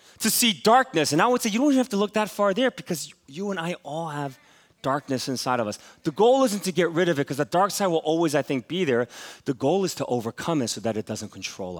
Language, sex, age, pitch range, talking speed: English, male, 30-49, 135-180 Hz, 280 wpm